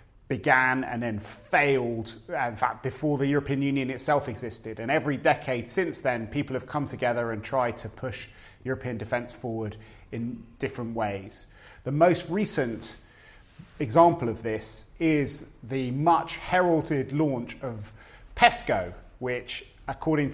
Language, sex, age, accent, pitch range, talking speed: English, male, 30-49, British, 115-145 Hz, 135 wpm